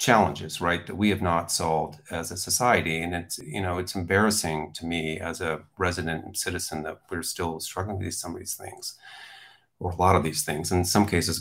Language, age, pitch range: English, 40-59, 85-95 Hz